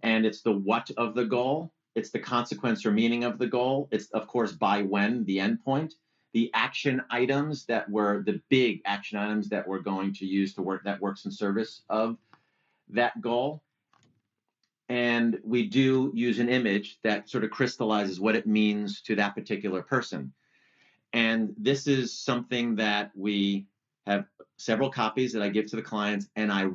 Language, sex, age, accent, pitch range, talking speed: English, male, 40-59, American, 105-130 Hz, 180 wpm